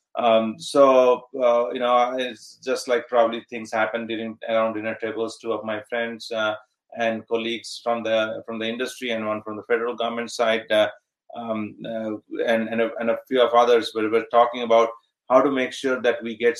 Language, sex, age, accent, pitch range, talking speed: English, male, 30-49, Indian, 110-125 Hz, 200 wpm